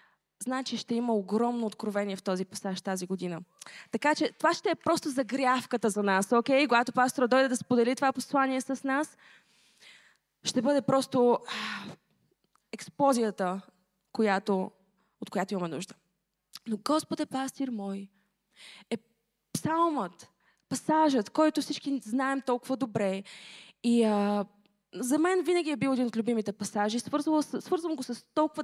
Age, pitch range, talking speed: 20-39, 210-285 Hz, 140 wpm